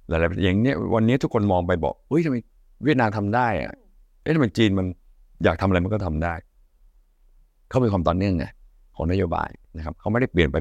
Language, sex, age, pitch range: Thai, male, 60-79, 80-105 Hz